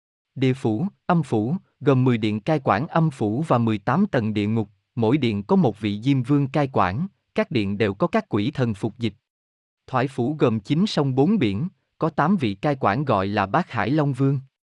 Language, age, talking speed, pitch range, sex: Vietnamese, 20-39, 210 wpm, 110-155 Hz, male